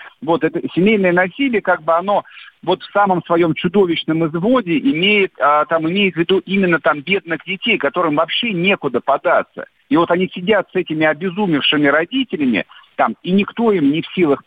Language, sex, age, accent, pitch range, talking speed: Russian, male, 50-69, native, 150-195 Hz, 175 wpm